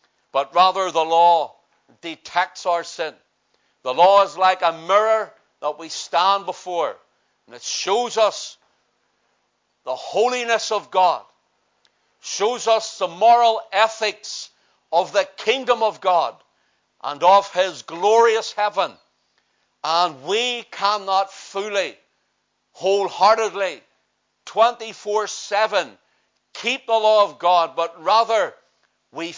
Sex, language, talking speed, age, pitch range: male, English, 110 wpm, 60-79, 175-220 Hz